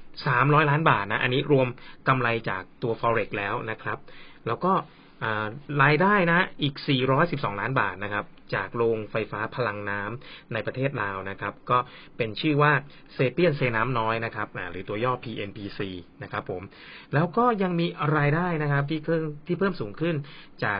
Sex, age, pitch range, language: male, 20-39, 115-150 Hz, Thai